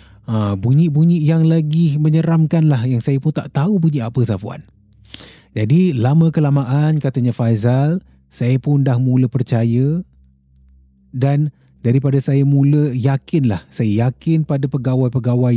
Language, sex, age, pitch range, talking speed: Malay, male, 30-49, 110-145 Hz, 130 wpm